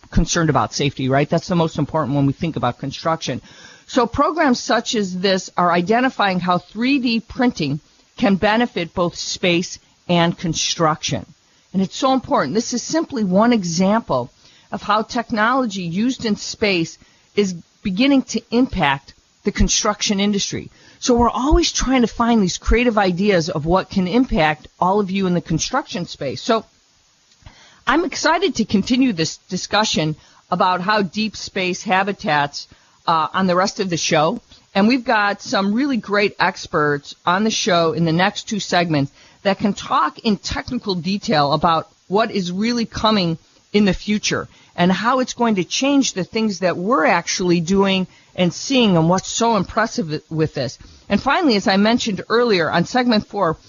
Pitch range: 170-230 Hz